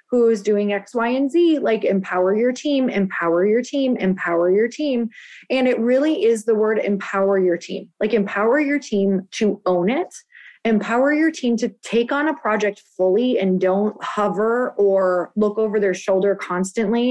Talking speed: 180 wpm